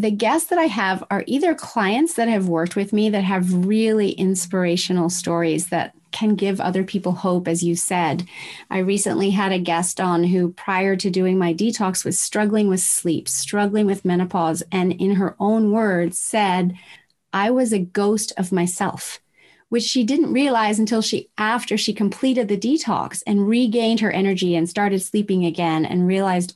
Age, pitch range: 30-49, 180-215 Hz